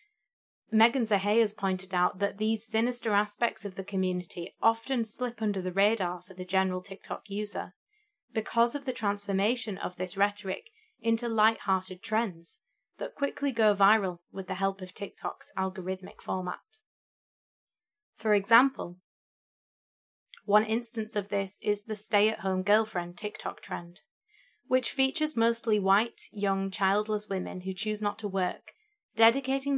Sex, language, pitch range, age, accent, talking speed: female, English, 185-225 Hz, 30-49, British, 135 wpm